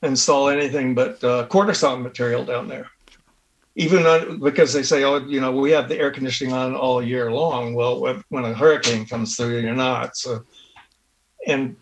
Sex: male